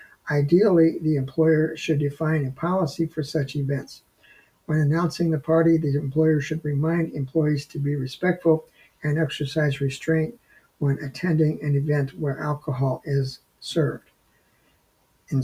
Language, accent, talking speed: English, American, 130 wpm